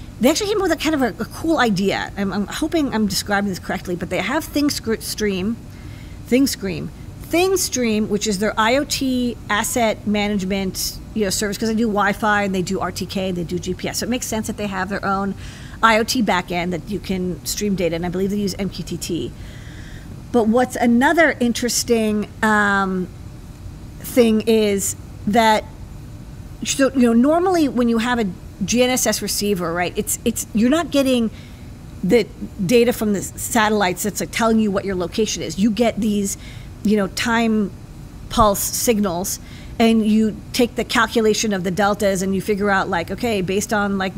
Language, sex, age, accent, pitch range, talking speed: English, female, 50-69, American, 195-235 Hz, 175 wpm